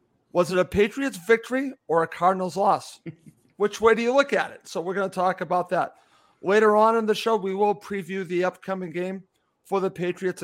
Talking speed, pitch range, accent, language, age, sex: 215 wpm, 170-210 Hz, American, English, 50-69, male